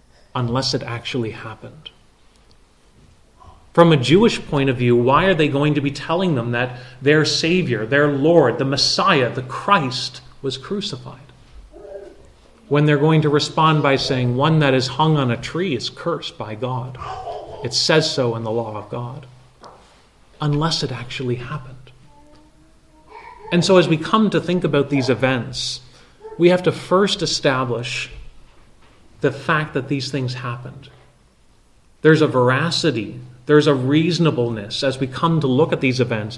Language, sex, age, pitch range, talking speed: English, male, 30-49, 125-155 Hz, 155 wpm